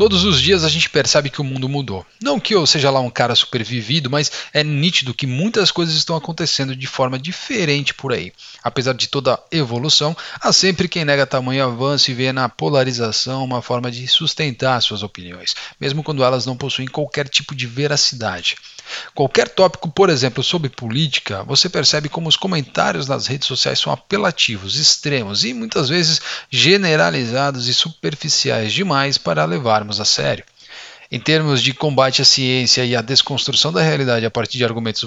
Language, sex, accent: Portuguese, male, Brazilian